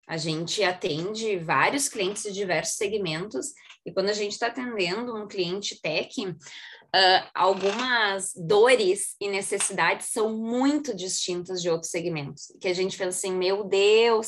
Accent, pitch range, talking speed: Brazilian, 180-215 Hz, 145 wpm